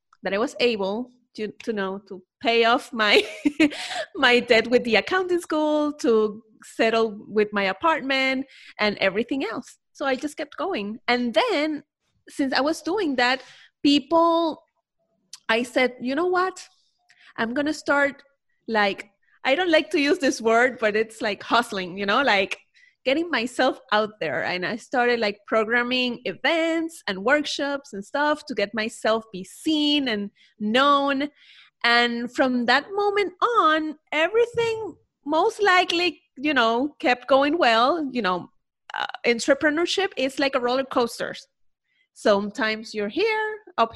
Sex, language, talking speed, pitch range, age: female, English, 150 wpm, 225-310 Hz, 30-49